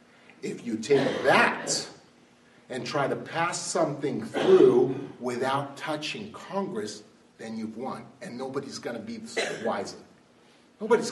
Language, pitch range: English, 135-210 Hz